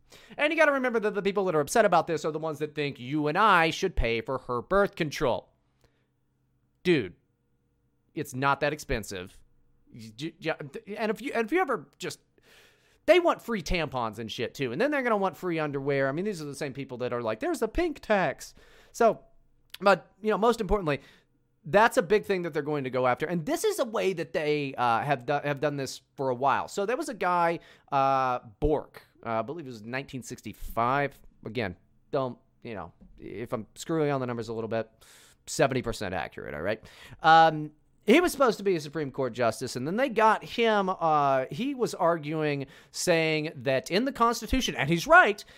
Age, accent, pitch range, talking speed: 30-49, American, 135-200 Hz, 210 wpm